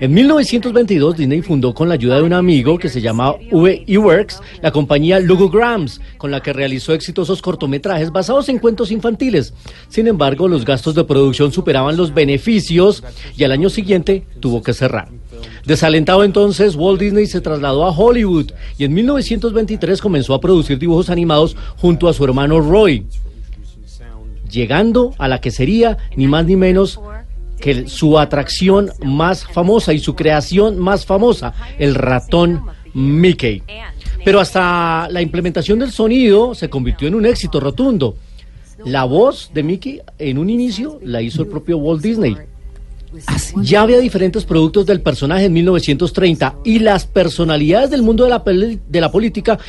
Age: 40-59